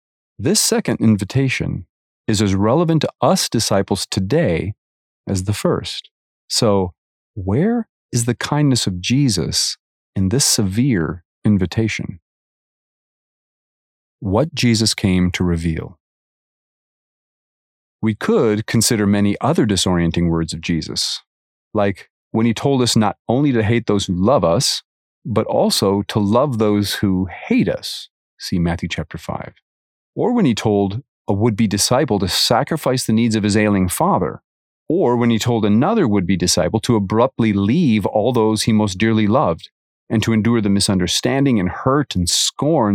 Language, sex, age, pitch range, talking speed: English, male, 40-59, 90-115 Hz, 145 wpm